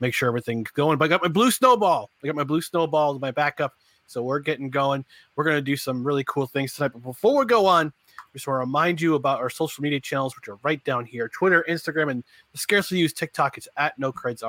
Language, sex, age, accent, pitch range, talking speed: English, male, 30-49, American, 130-175 Hz, 260 wpm